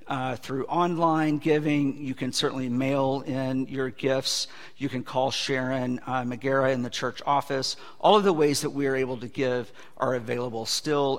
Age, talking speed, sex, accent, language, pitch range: 50-69, 180 wpm, male, American, English, 125-160 Hz